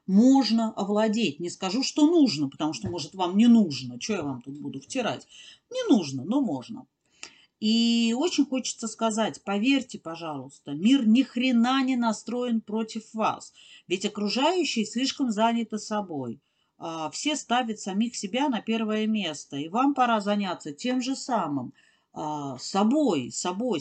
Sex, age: female, 40-59